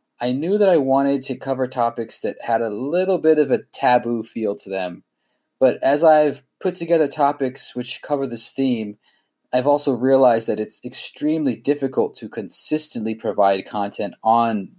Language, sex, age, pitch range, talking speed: English, male, 20-39, 105-135 Hz, 165 wpm